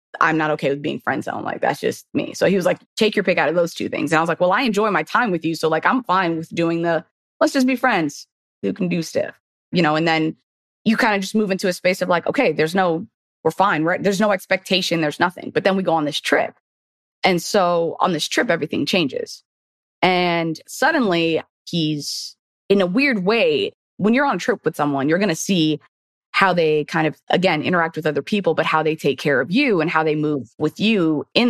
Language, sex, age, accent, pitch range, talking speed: English, female, 20-39, American, 155-190 Hz, 245 wpm